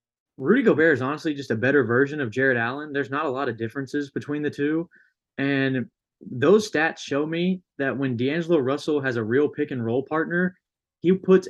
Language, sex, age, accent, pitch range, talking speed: English, male, 20-39, American, 125-150 Hz, 190 wpm